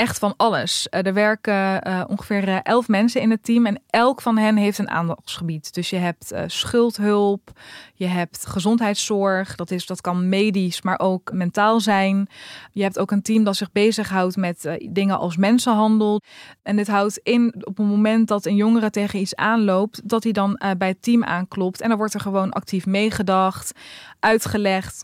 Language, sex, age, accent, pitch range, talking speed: Dutch, female, 20-39, Dutch, 190-225 Hz, 185 wpm